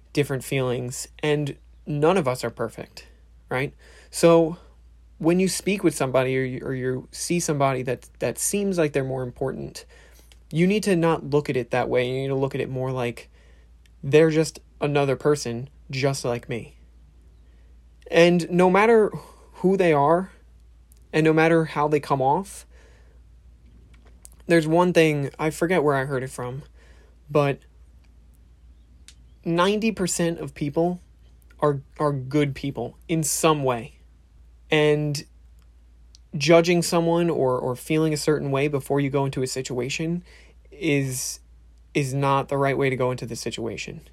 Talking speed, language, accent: 150 wpm, English, American